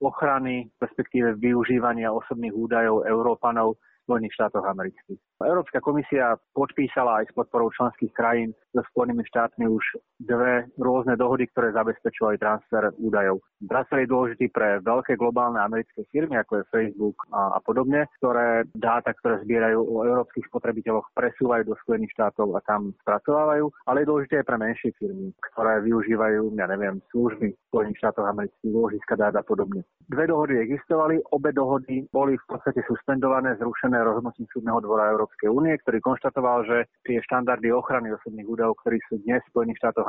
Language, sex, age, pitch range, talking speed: Slovak, male, 30-49, 110-130 Hz, 150 wpm